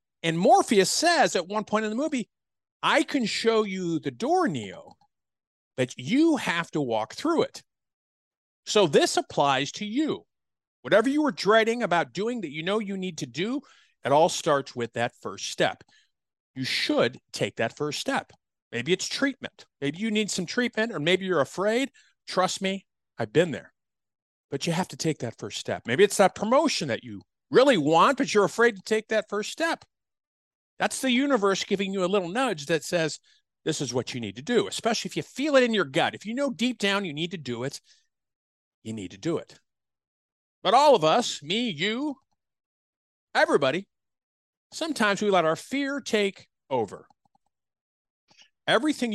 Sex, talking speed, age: male, 185 wpm, 50-69